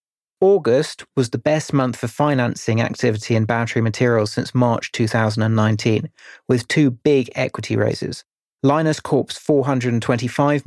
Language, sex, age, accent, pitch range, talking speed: English, male, 30-49, British, 115-140 Hz, 125 wpm